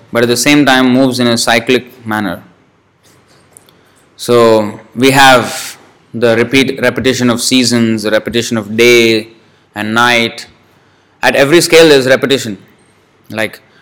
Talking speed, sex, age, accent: 135 wpm, male, 20-39, Indian